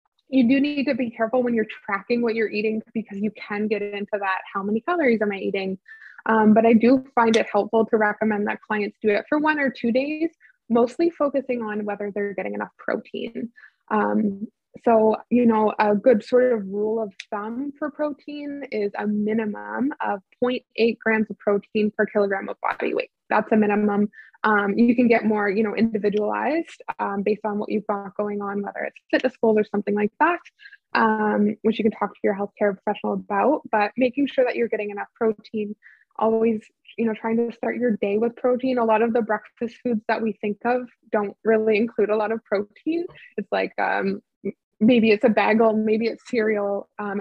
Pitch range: 210-245 Hz